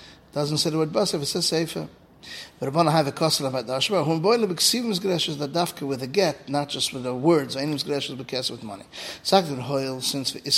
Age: 30-49